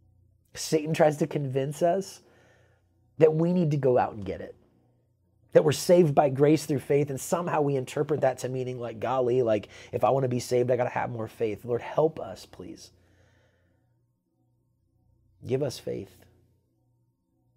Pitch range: 100-130 Hz